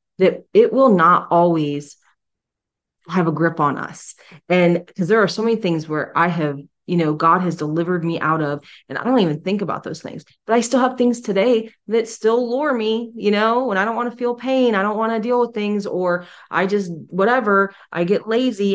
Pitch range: 160-205 Hz